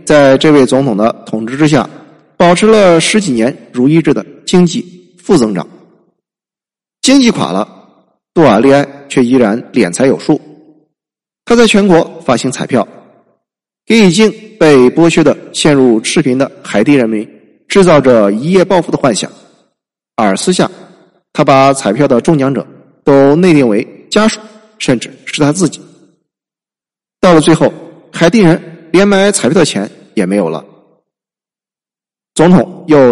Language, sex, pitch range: Chinese, male, 130-180 Hz